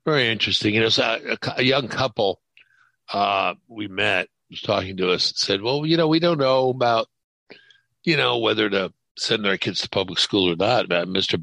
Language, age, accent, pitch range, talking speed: English, 60-79, American, 100-140 Hz, 210 wpm